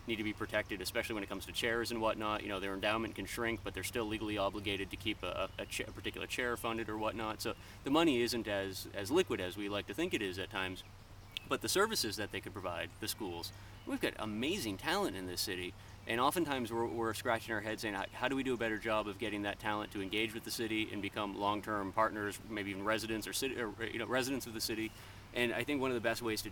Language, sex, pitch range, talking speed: English, male, 100-120 Hz, 260 wpm